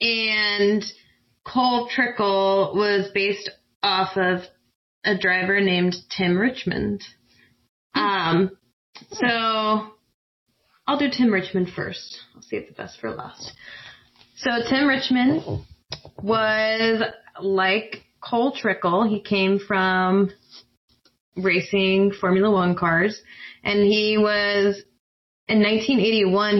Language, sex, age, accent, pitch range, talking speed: English, female, 20-39, American, 180-215 Hz, 100 wpm